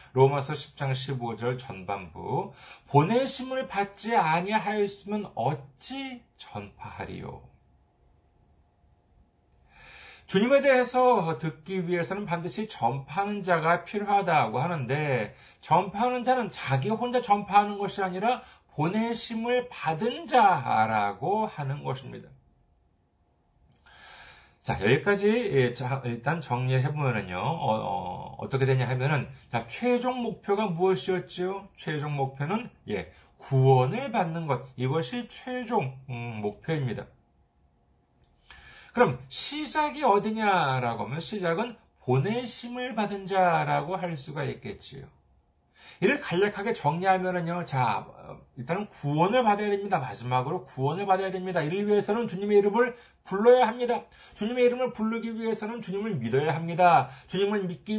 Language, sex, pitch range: Korean, male, 135-225 Hz